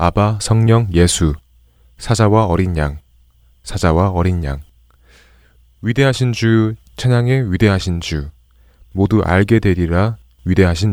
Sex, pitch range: male, 75-120 Hz